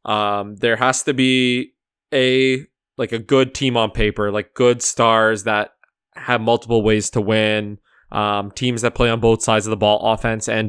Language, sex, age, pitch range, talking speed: English, male, 20-39, 110-130 Hz, 185 wpm